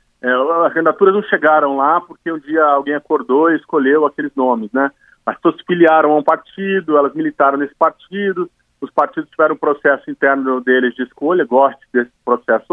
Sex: male